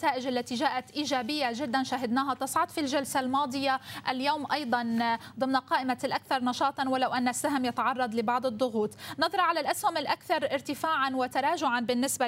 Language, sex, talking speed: Arabic, female, 140 wpm